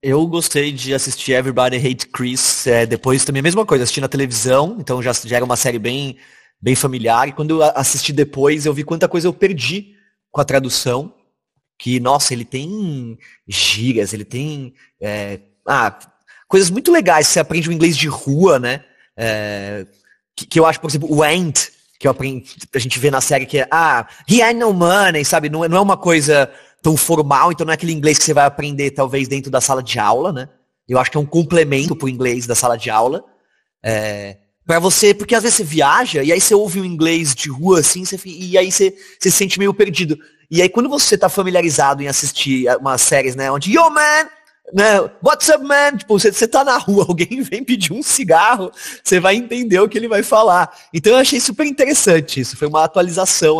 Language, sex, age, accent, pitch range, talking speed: Portuguese, male, 20-39, Brazilian, 130-190 Hz, 210 wpm